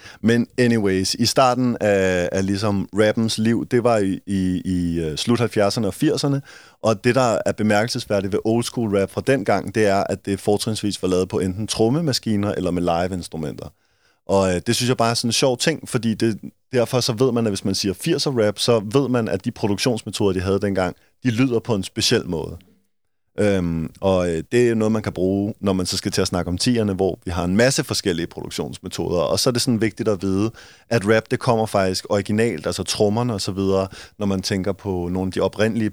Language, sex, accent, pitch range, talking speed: Danish, male, native, 95-115 Hz, 220 wpm